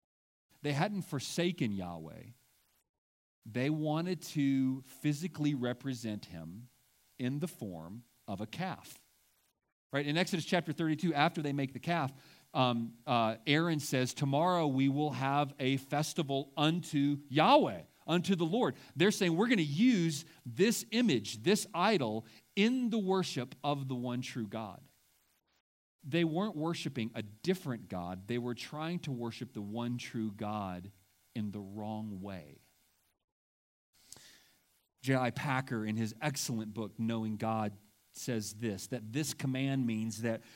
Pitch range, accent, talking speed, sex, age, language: 115-160 Hz, American, 140 wpm, male, 40-59, English